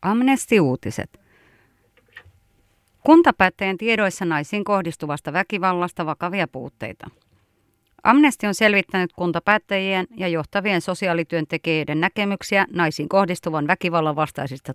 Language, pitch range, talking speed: Finnish, 160-195 Hz, 80 wpm